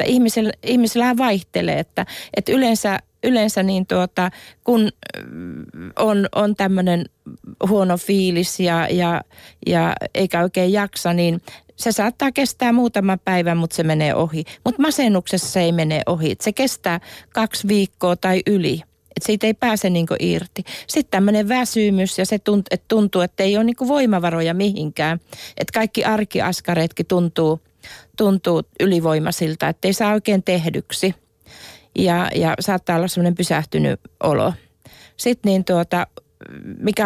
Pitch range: 175-215 Hz